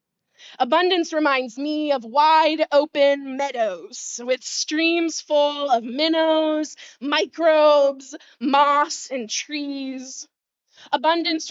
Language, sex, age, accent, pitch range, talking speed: English, female, 20-39, American, 230-300 Hz, 85 wpm